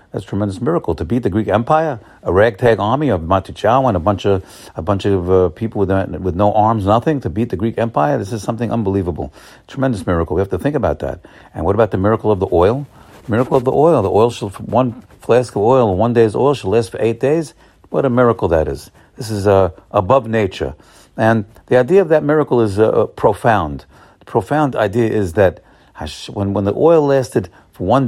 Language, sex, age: English, male, 50-69